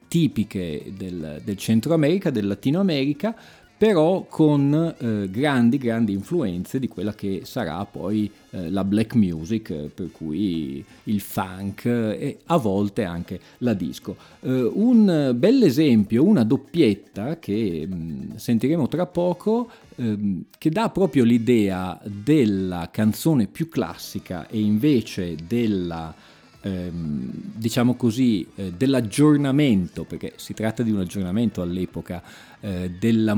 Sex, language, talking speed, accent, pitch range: male, Italian, 120 wpm, native, 100-145 Hz